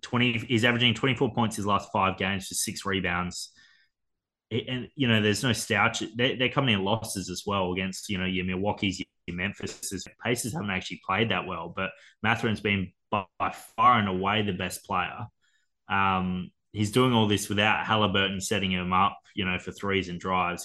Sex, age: male, 20-39